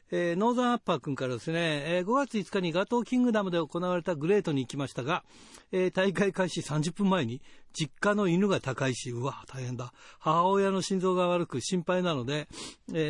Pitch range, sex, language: 150-195 Hz, male, Japanese